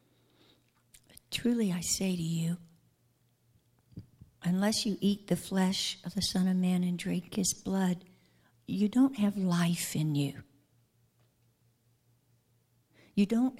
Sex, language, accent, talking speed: female, English, American, 120 wpm